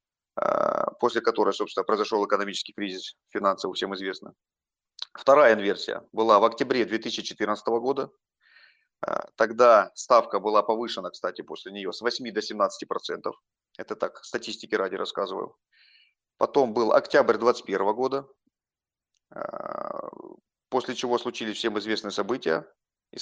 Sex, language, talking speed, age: male, Turkish, 115 wpm, 30-49